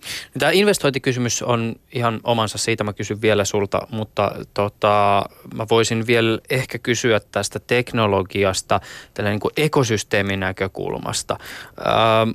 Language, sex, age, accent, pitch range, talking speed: Finnish, male, 20-39, native, 105-130 Hz, 115 wpm